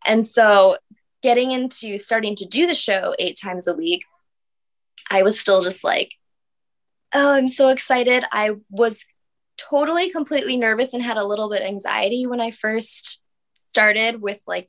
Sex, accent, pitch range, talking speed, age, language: female, American, 190-235 Hz, 160 wpm, 20-39, English